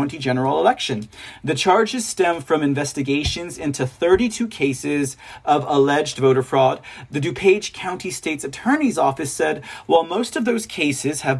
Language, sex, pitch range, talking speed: English, male, 140-195 Hz, 140 wpm